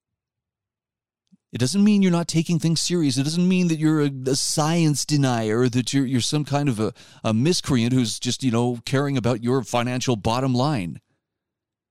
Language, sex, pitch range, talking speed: English, male, 115-160 Hz, 180 wpm